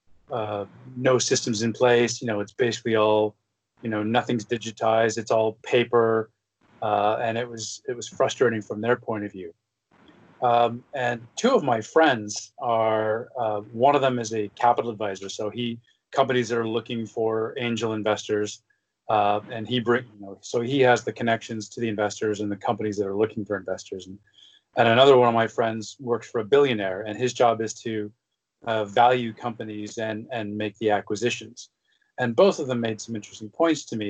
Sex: male